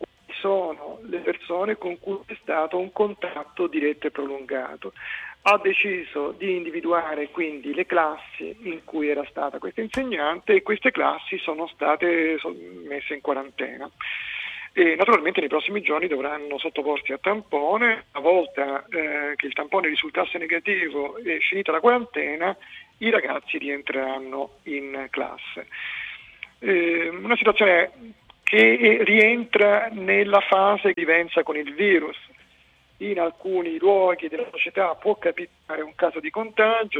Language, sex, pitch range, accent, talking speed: Italian, male, 150-195 Hz, native, 135 wpm